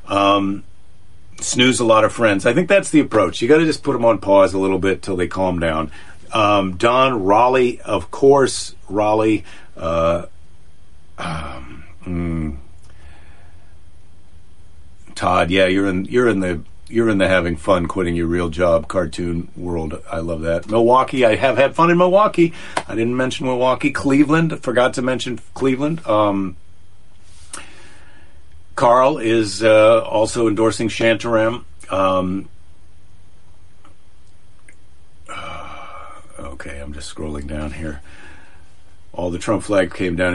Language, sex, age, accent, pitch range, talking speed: English, male, 50-69, American, 85-110 Hz, 135 wpm